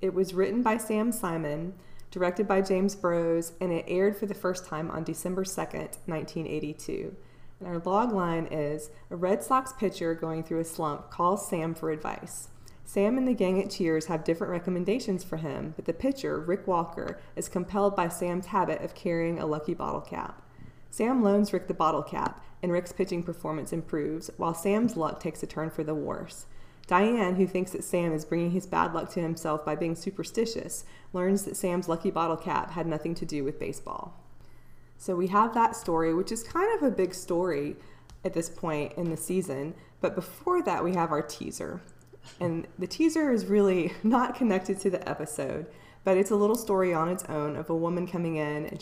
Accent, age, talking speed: American, 20-39, 195 wpm